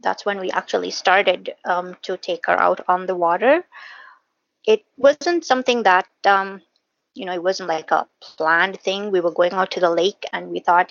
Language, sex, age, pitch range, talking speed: English, female, 20-39, 180-260 Hz, 200 wpm